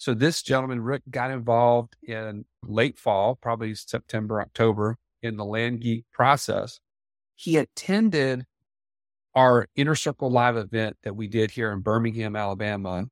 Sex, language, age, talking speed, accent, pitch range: male, English, 40-59, 140 wpm, American, 110-135 Hz